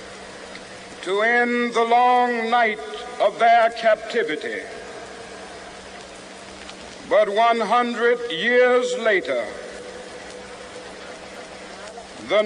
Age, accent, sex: 60-79, American, male